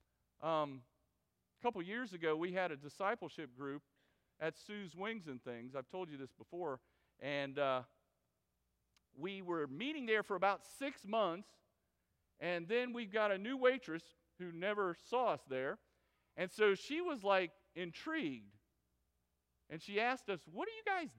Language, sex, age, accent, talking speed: English, male, 40-59, American, 160 wpm